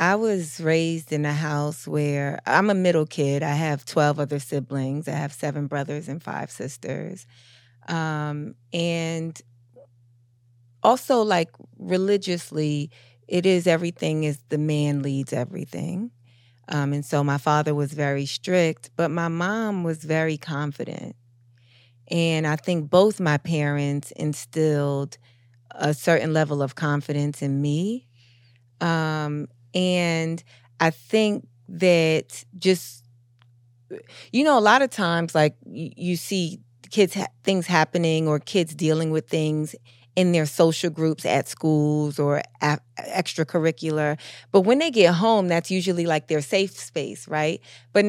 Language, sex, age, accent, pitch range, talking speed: English, female, 30-49, American, 140-180 Hz, 135 wpm